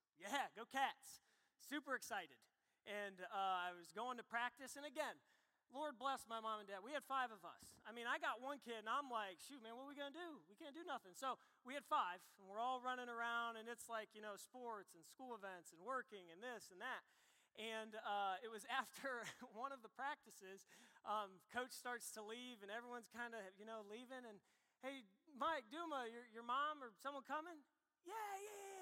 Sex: male